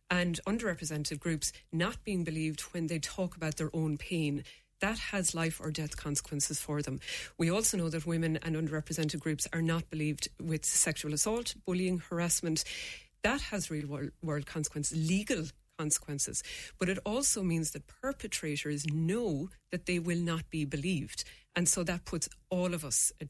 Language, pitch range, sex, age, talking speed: English, 155-185 Hz, female, 30-49, 165 wpm